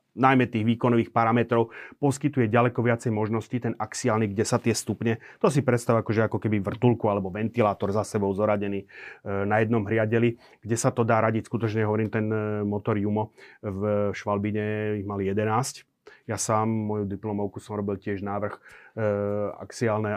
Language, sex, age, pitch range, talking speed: Slovak, male, 30-49, 105-115 Hz, 160 wpm